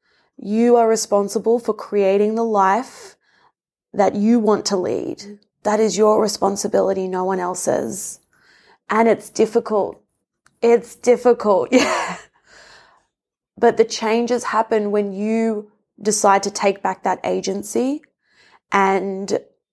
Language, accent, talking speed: English, Australian, 115 wpm